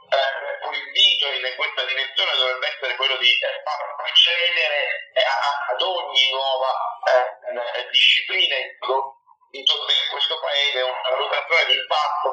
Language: Italian